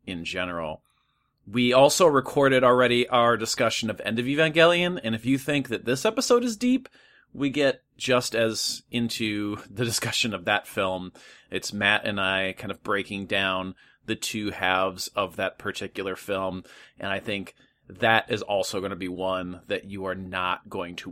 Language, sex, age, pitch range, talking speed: English, male, 30-49, 100-125 Hz, 175 wpm